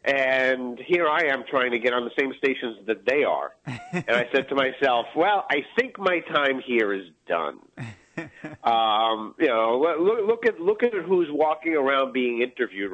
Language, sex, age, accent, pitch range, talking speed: English, male, 50-69, American, 125-160 Hz, 185 wpm